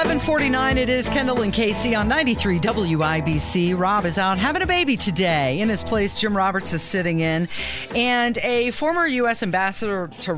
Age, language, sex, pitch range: 40-59, English, female, 145-195 Hz